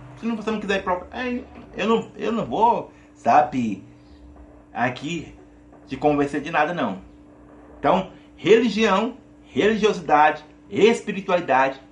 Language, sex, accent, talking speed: Portuguese, male, Brazilian, 85 wpm